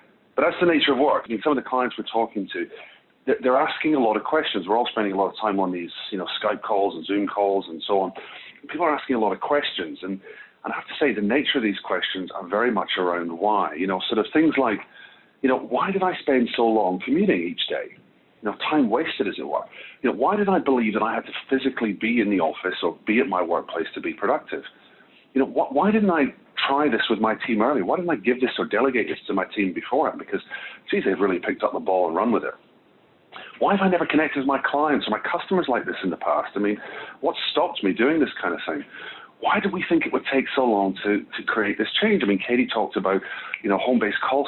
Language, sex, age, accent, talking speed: English, male, 40-59, British, 260 wpm